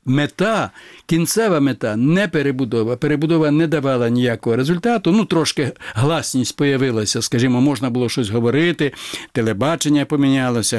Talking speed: 115 wpm